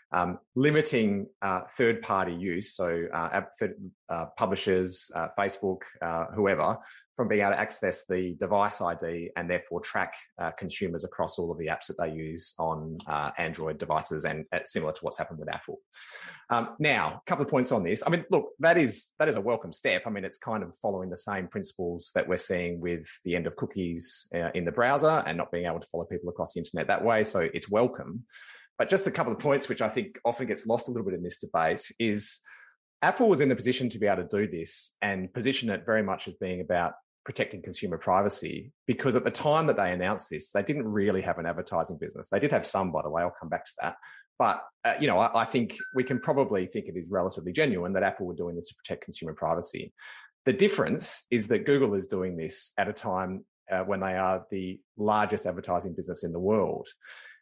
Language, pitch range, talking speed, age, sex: English, 90-125 Hz, 225 wpm, 30-49, male